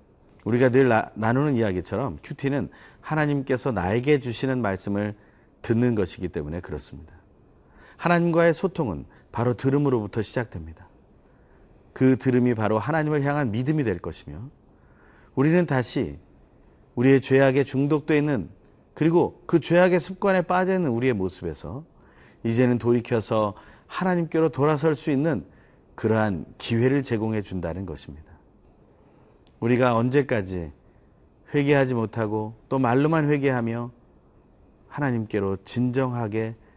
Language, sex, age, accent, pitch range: Korean, male, 40-59, native, 95-145 Hz